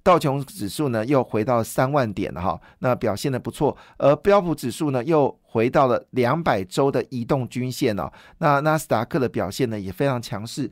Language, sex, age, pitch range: Chinese, male, 50-69, 120-155 Hz